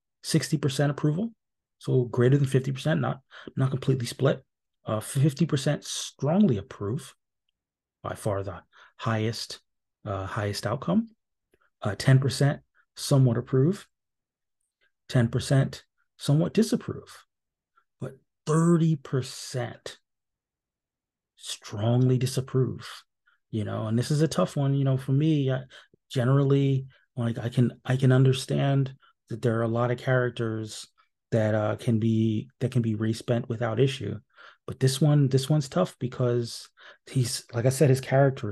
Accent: American